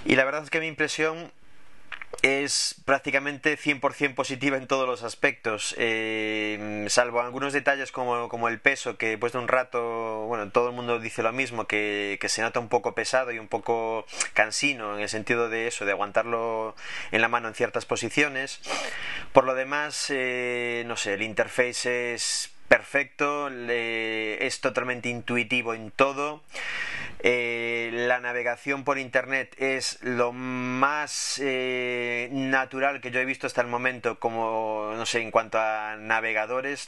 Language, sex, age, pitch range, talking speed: English, male, 20-39, 115-135 Hz, 160 wpm